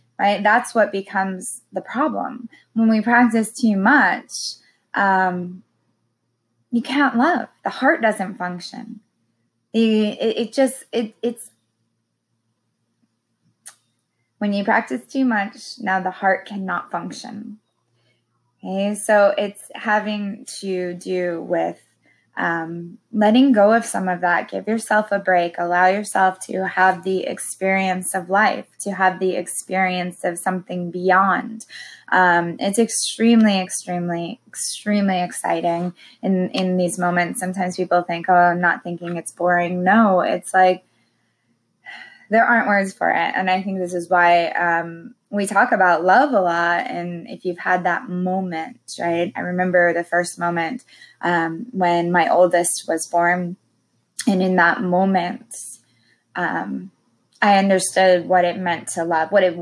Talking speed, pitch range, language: 140 wpm, 175-210 Hz, English